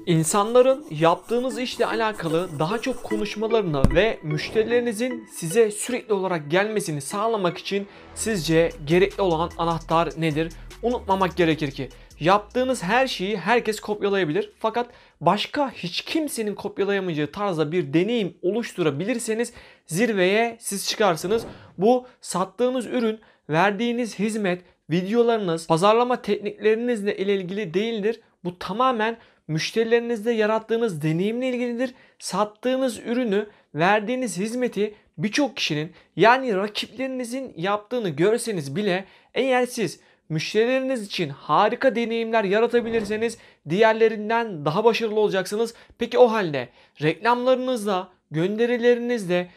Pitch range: 180-235 Hz